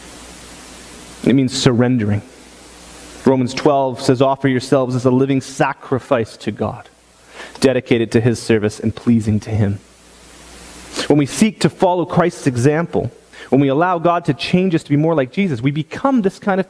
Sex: male